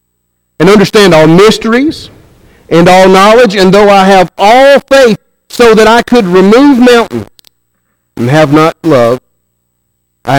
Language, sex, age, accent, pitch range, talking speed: English, male, 50-69, American, 155-205 Hz, 140 wpm